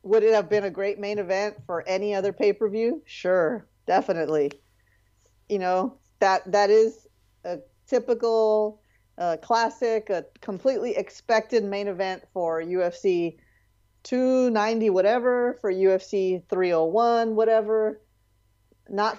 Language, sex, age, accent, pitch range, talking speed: English, female, 30-49, American, 175-220 Hz, 115 wpm